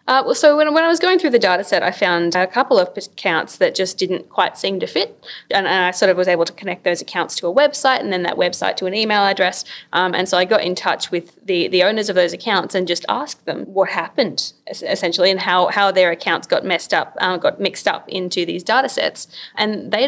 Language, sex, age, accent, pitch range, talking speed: English, female, 20-39, Australian, 175-210 Hz, 265 wpm